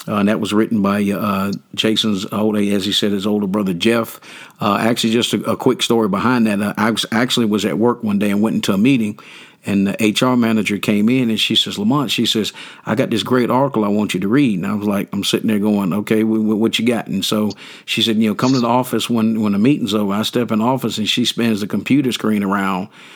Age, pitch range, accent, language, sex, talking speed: 50-69, 105-115 Hz, American, English, male, 255 wpm